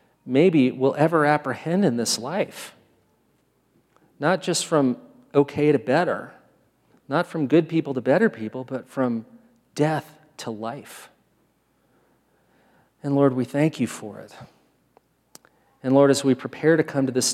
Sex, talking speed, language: male, 140 wpm, English